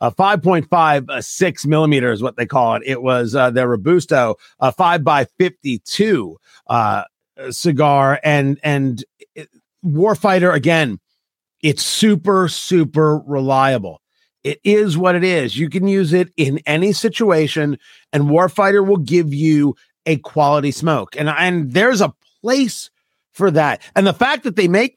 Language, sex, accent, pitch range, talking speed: English, male, American, 140-190 Hz, 155 wpm